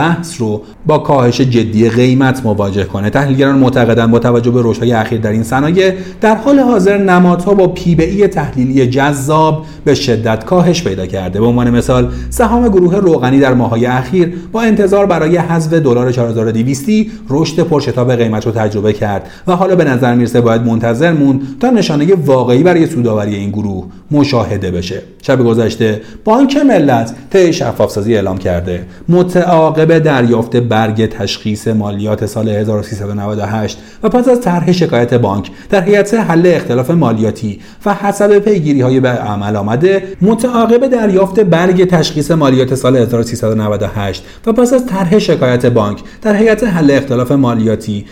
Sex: male